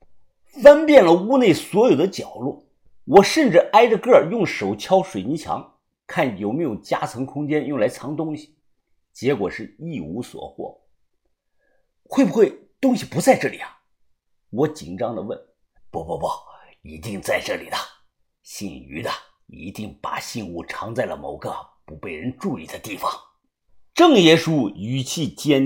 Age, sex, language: 50-69, male, Chinese